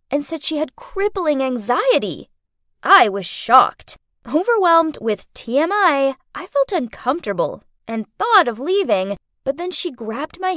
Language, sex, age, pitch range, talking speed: English, female, 20-39, 235-365 Hz, 135 wpm